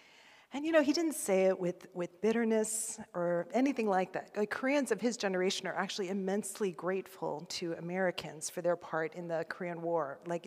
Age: 40-59